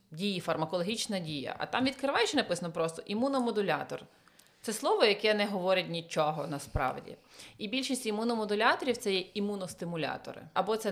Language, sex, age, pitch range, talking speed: Ukrainian, female, 30-49, 170-220 Hz, 135 wpm